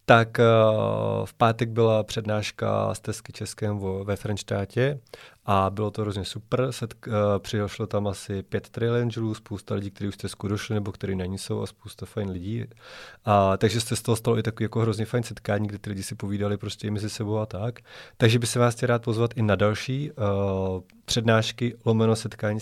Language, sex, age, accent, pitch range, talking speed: Czech, male, 20-39, native, 100-115 Hz, 195 wpm